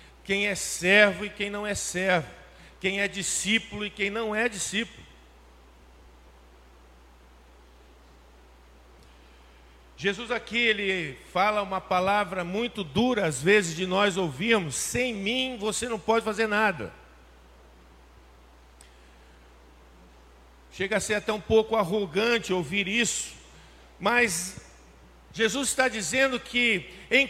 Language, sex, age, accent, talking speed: Portuguese, male, 50-69, Brazilian, 110 wpm